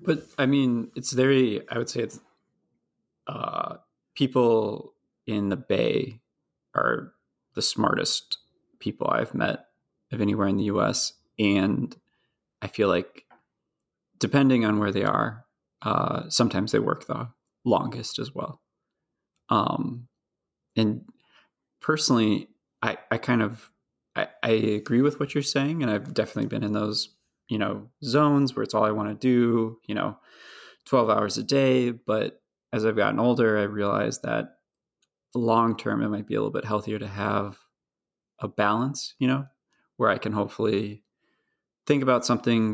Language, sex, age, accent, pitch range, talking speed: English, male, 20-39, American, 105-125 Hz, 150 wpm